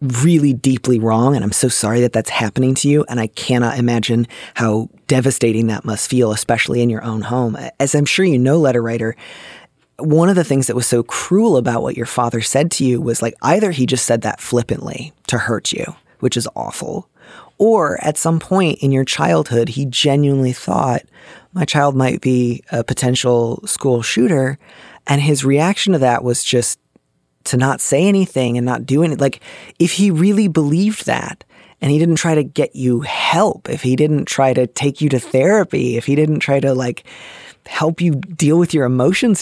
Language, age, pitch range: English, 20-39, 120-155 Hz